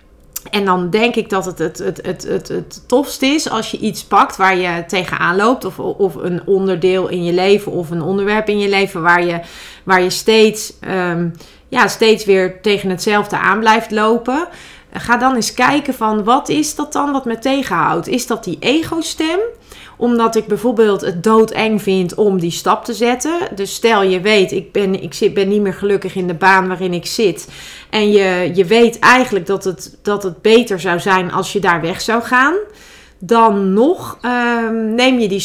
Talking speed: 190 wpm